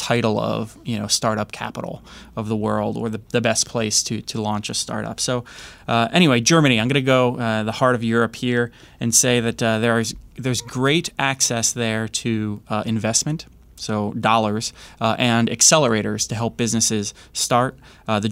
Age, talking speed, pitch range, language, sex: 20-39, 185 wpm, 110-130 Hz, English, male